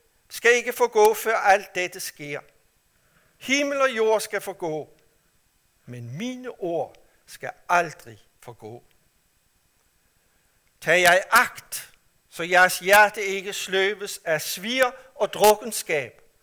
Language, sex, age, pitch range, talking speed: Danish, male, 60-79, 130-200 Hz, 115 wpm